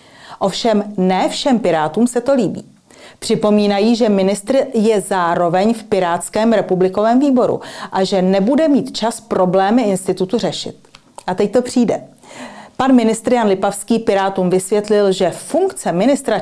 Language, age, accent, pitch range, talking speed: Czech, 40-59, native, 185-230 Hz, 135 wpm